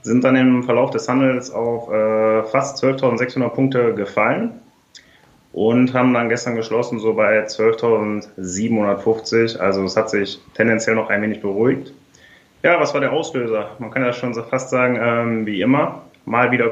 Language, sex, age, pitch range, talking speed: German, male, 30-49, 110-130 Hz, 165 wpm